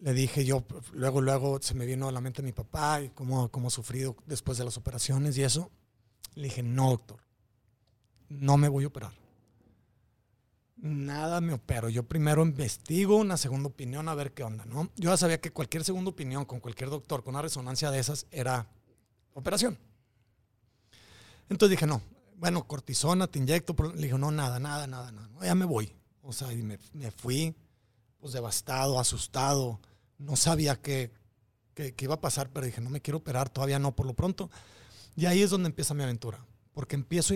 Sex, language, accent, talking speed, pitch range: male, Spanish, Mexican, 190 wpm, 115-150 Hz